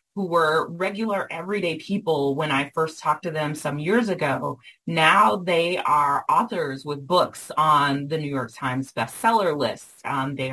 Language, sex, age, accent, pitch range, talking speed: English, female, 30-49, American, 150-185 Hz, 165 wpm